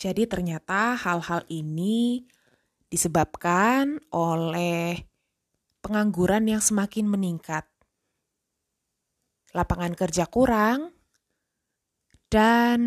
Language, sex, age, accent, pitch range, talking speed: Indonesian, female, 20-39, native, 165-210 Hz, 65 wpm